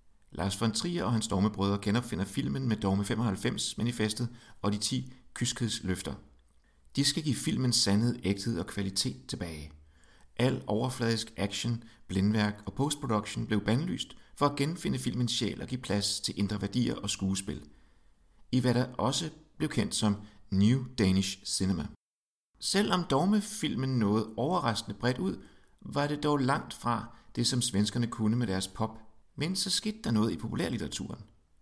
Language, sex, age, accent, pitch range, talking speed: Danish, male, 60-79, native, 100-130 Hz, 150 wpm